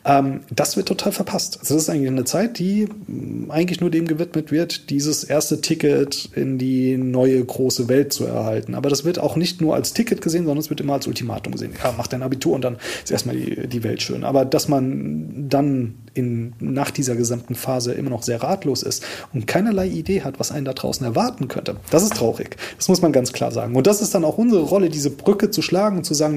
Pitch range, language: 125-165 Hz, German